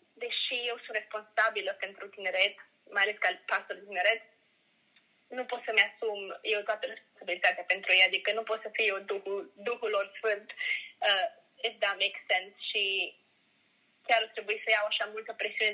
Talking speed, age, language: 165 wpm, 20-39, Romanian